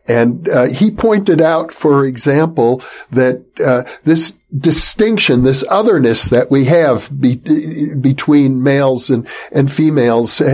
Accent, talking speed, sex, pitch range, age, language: American, 125 wpm, male, 135-175 Hz, 60-79, English